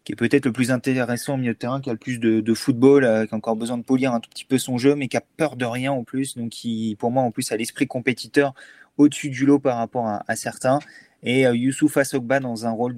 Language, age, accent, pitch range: French, 20-39, French, 115-135 Hz